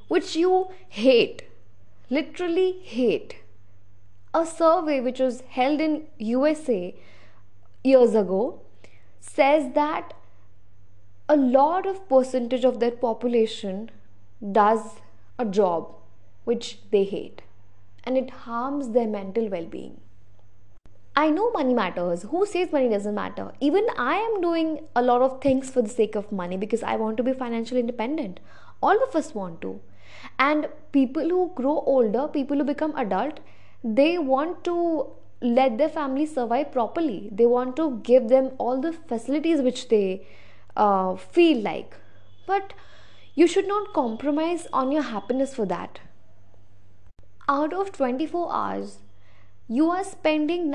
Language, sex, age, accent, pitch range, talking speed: Hindi, female, 20-39, native, 195-300 Hz, 135 wpm